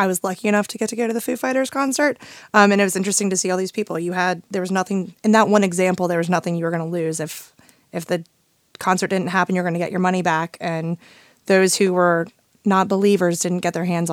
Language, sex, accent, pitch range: English, female, American, 175-205 Hz